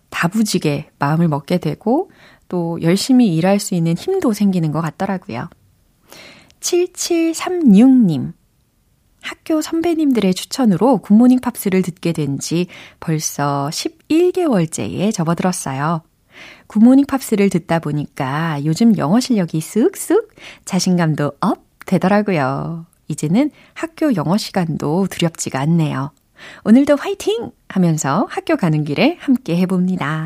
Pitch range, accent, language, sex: 165-250 Hz, native, Korean, female